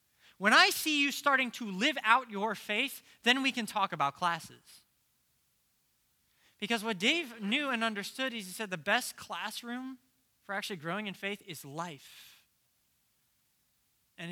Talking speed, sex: 150 wpm, male